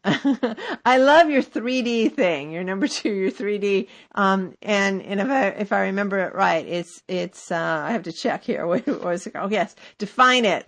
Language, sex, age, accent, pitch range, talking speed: English, female, 50-69, American, 180-240 Hz, 175 wpm